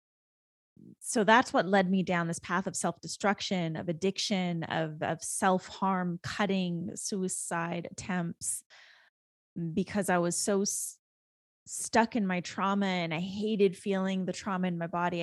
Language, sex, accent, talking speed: English, female, American, 140 wpm